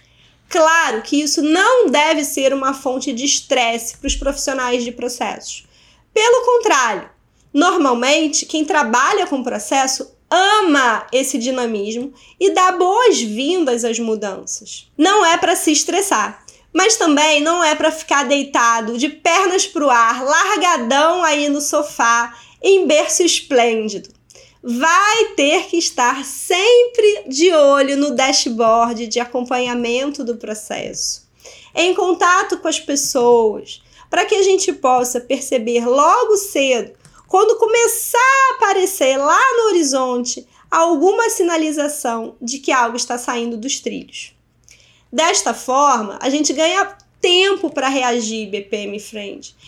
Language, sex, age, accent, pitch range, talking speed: Portuguese, female, 20-39, Brazilian, 245-350 Hz, 125 wpm